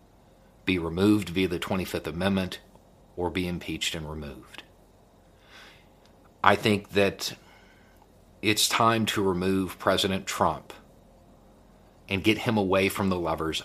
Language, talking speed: English, 120 wpm